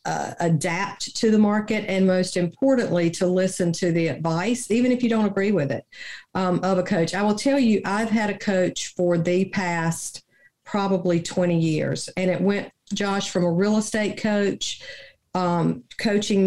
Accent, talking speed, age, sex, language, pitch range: American, 180 wpm, 50-69, female, English, 170-200 Hz